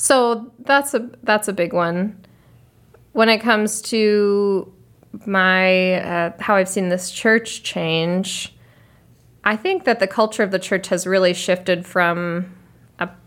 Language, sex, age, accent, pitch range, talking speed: English, female, 20-39, American, 165-195 Hz, 145 wpm